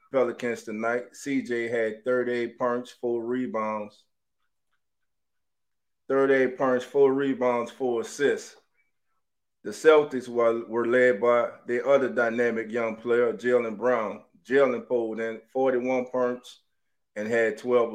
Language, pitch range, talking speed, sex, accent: English, 105-125 Hz, 115 wpm, male, American